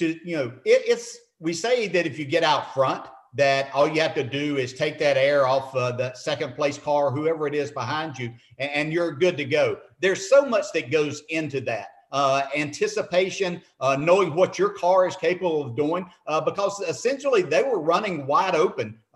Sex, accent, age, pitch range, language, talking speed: male, American, 50-69, 145-195 Hz, English, 205 wpm